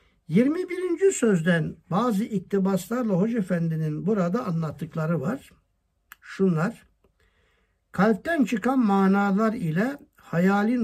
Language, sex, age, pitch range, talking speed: Turkish, male, 60-79, 175-235 Hz, 80 wpm